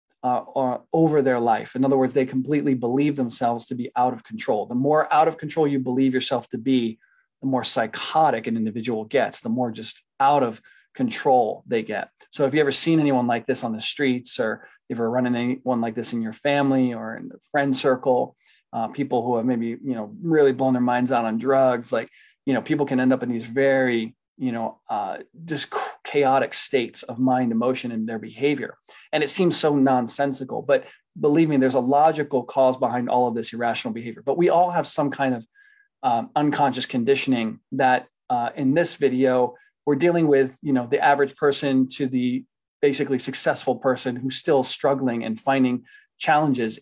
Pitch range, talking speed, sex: 125-145 Hz, 200 wpm, male